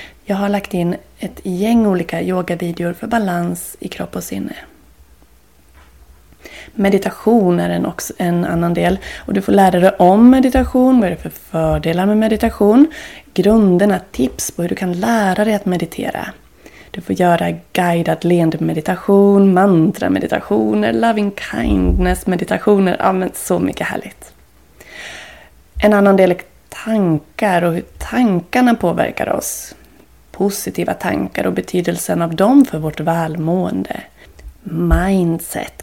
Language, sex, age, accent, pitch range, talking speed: Swedish, female, 20-39, native, 160-215 Hz, 135 wpm